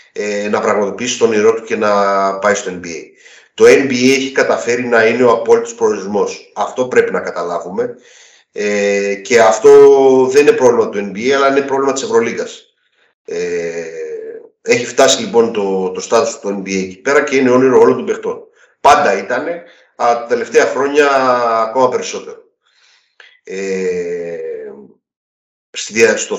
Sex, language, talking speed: male, Greek, 135 wpm